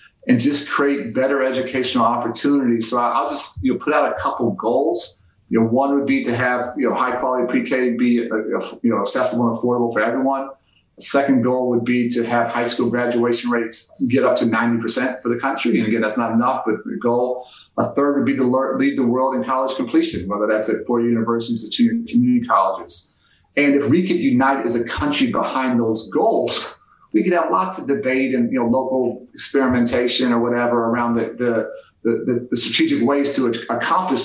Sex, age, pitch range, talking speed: male, 40-59, 120-140 Hz, 205 wpm